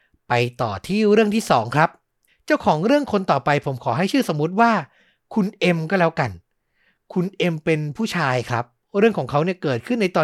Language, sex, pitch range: Thai, male, 140-195 Hz